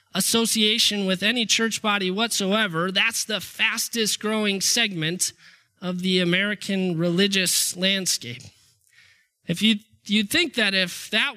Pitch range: 180-225 Hz